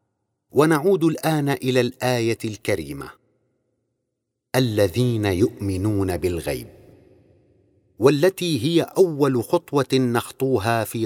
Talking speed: 75 wpm